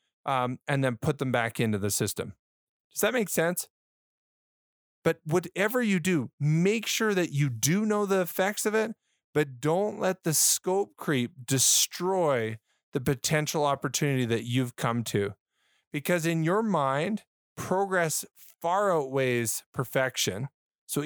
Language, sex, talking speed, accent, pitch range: English, male, 140 wpm, American, 120-170 Hz